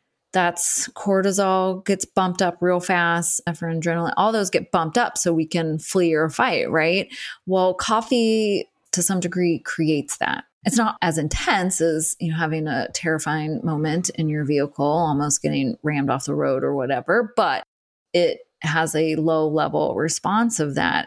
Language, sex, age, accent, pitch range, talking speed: English, female, 20-39, American, 155-185 Hz, 170 wpm